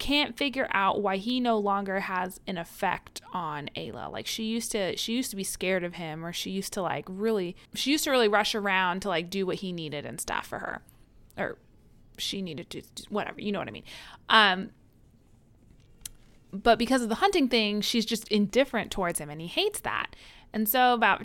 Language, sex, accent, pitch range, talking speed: English, female, American, 165-225 Hz, 210 wpm